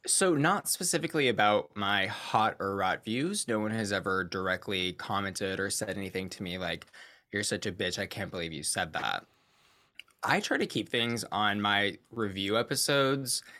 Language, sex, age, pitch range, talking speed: English, male, 20-39, 95-115 Hz, 175 wpm